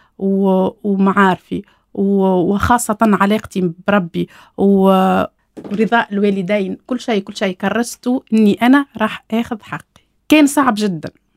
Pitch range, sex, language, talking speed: 220-295 Hz, female, Arabic, 115 wpm